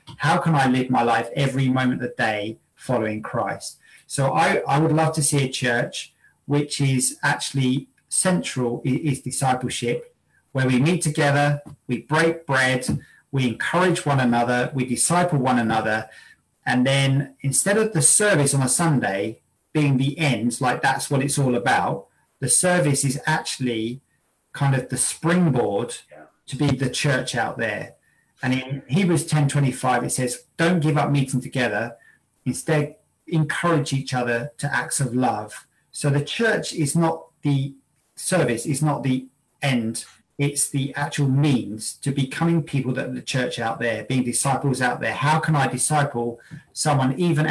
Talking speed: 165 wpm